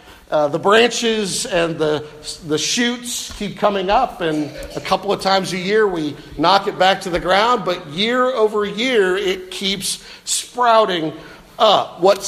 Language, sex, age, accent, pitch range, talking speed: English, male, 50-69, American, 165-215 Hz, 160 wpm